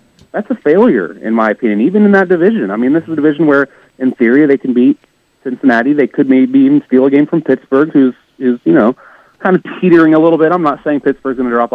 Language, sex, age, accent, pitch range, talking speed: English, male, 30-49, American, 110-145 Hz, 255 wpm